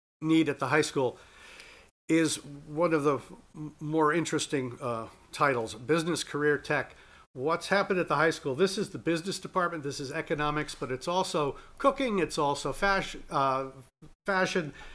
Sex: male